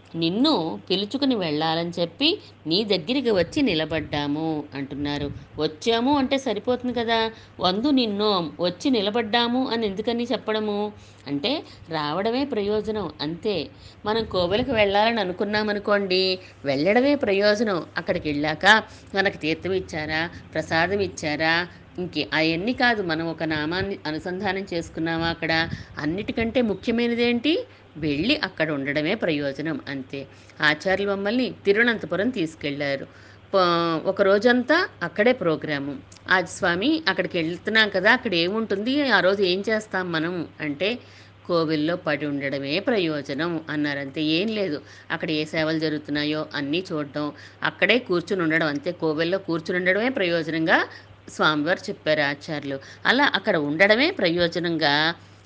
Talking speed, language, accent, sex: 110 wpm, Telugu, native, female